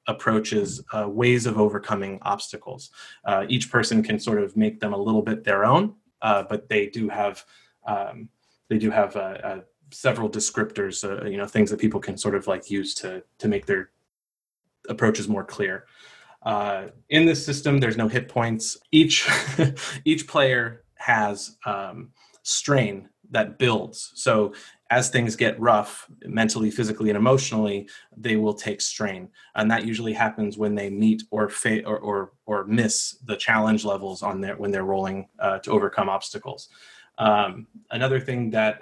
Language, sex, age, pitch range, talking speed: English, male, 30-49, 100-125 Hz, 165 wpm